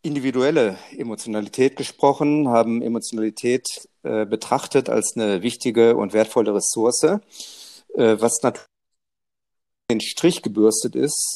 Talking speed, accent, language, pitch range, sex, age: 105 wpm, German, German, 110-130 Hz, male, 40-59